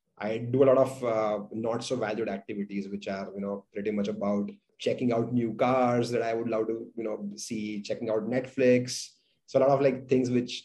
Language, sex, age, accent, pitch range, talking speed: English, male, 30-49, Indian, 105-130 Hz, 220 wpm